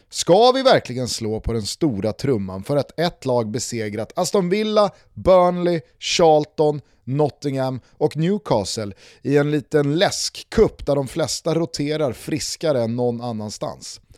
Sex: male